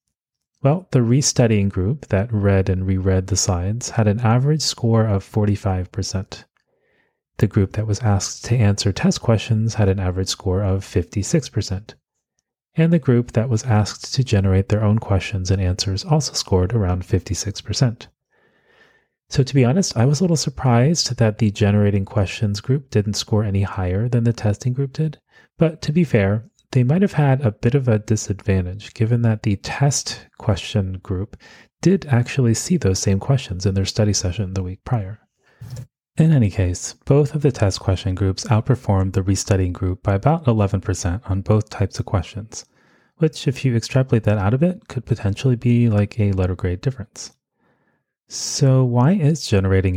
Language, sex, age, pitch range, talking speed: English, male, 30-49, 95-125 Hz, 175 wpm